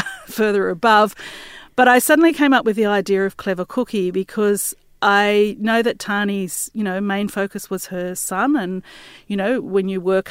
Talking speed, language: 180 wpm, English